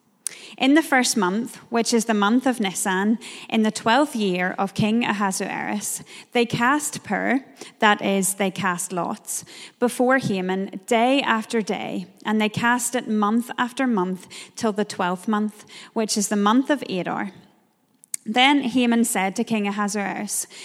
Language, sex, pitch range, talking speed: English, female, 195-235 Hz, 155 wpm